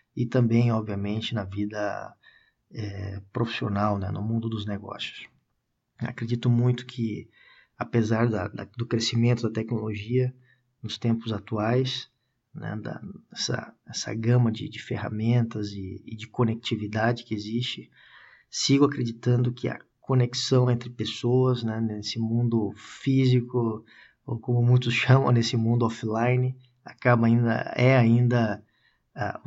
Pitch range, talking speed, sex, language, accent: 110-120 Hz, 125 wpm, male, Portuguese, Brazilian